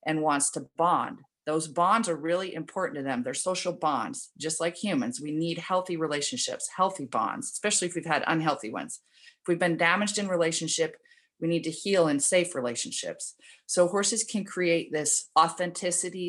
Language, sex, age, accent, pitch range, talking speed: English, female, 40-59, American, 155-190 Hz, 175 wpm